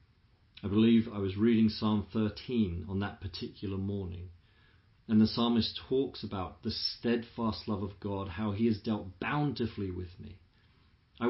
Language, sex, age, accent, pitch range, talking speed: English, male, 40-59, British, 95-115 Hz, 155 wpm